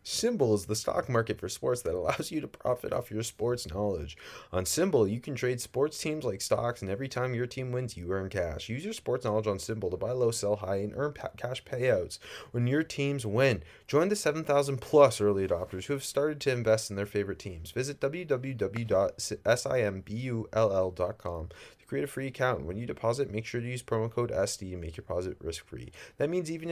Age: 30-49